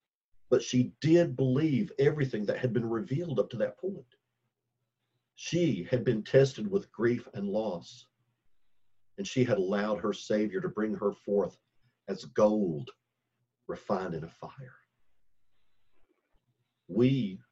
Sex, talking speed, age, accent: male, 130 wpm, 50-69, American